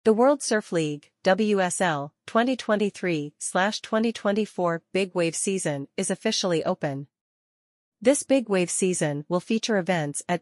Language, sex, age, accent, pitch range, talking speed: English, female, 40-59, American, 165-200 Hz, 115 wpm